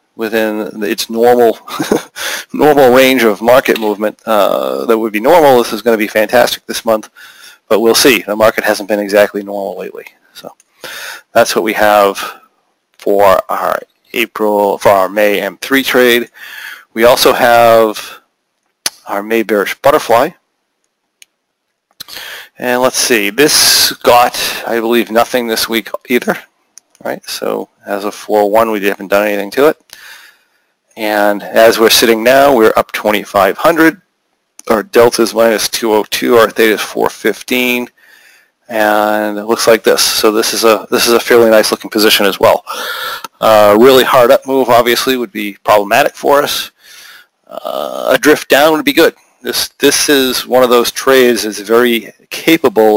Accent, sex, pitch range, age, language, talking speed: American, male, 105-120 Hz, 40-59, English, 155 wpm